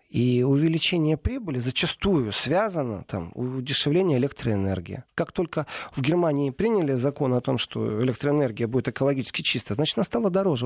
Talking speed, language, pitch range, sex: 140 wpm, Russian, 120-160 Hz, male